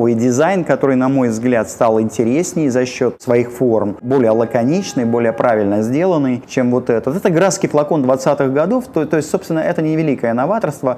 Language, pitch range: Russian, 115-150 Hz